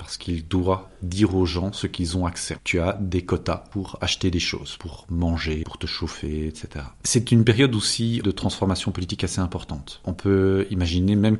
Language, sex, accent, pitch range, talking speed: French, male, French, 90-115 Hz, 195 wpm